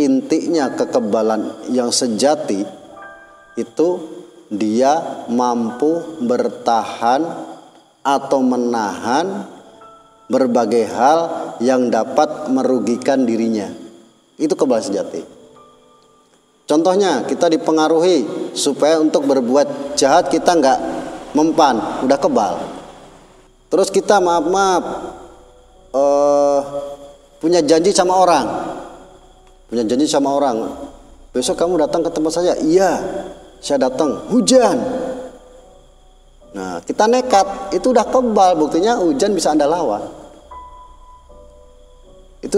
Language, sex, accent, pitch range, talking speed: Indonesian, male, native, 130-185 Hz, 90 wpm